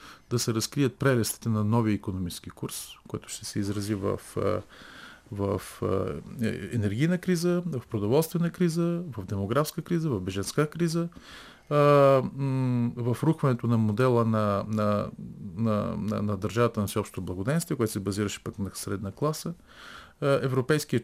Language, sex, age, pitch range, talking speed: Bulgarian, male, 40-59, 105-130 Hz, 130 wpm